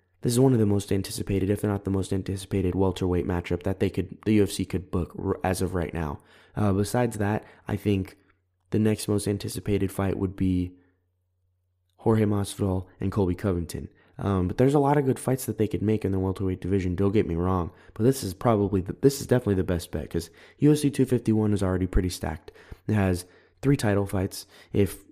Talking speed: 210 wpm